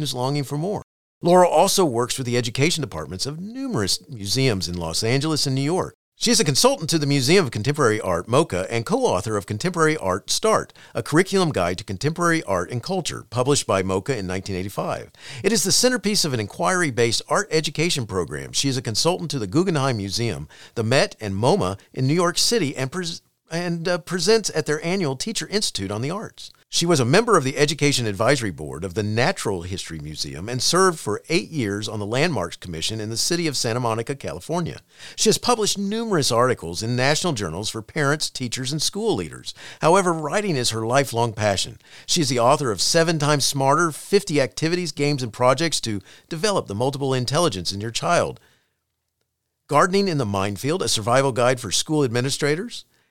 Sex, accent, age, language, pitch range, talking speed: male, American, 50-69, English, 110-165 Hz, 190 wpm